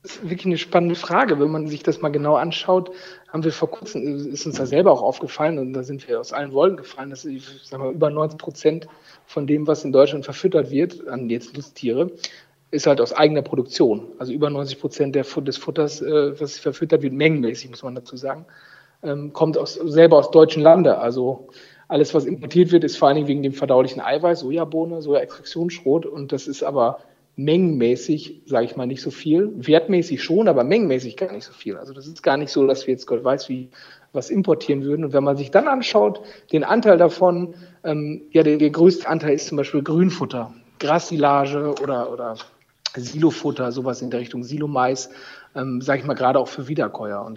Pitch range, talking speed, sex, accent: 135-160 Hz, 200 wpm, male, German